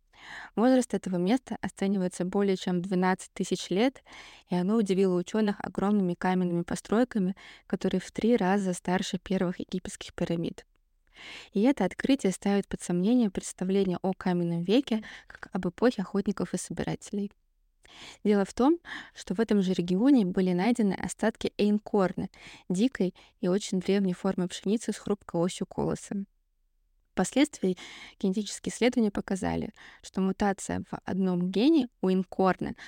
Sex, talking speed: female, 135 wpm